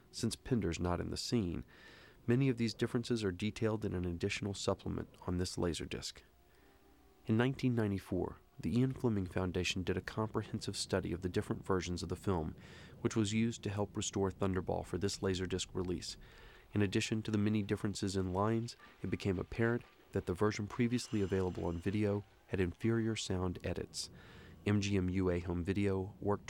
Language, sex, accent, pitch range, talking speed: English, male, American, 90-105 Hz, 170 wpm